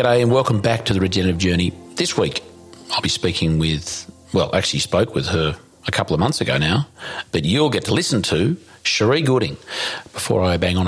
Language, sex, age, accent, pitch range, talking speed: English, male, 40-59, Australian, 85-110 Hz, 205 wpm